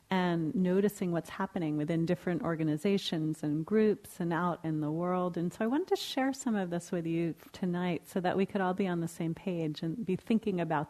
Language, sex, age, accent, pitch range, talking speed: English, female, 30-49, American, 165-210 Hz, 220 wpm